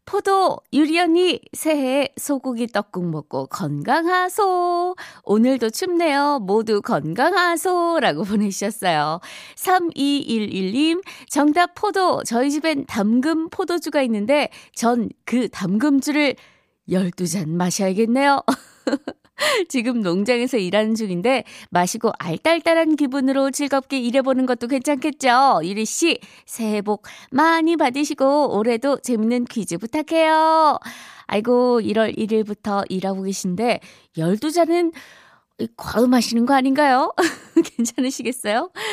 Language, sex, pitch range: Korean, female, 205-295 Hz